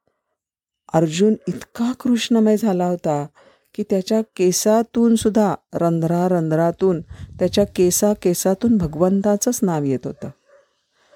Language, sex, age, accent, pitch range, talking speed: Marathi, female, 50-69, native, 145-190 Hz, 85 wpm